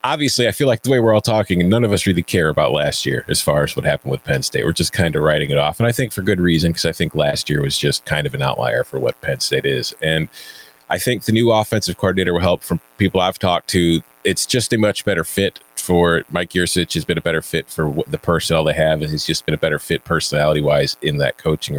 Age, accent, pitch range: 30-49, American, 80-110 Hz